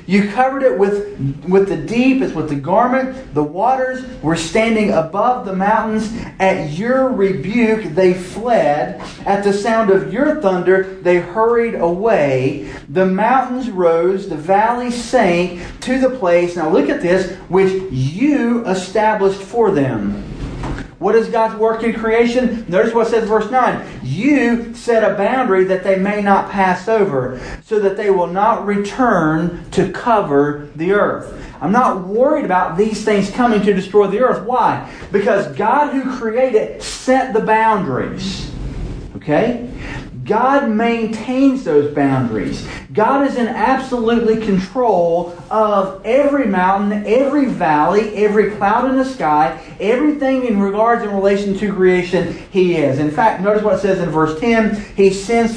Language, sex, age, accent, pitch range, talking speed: English, male, 40-59, American, 180-230 Hz, 155 wpm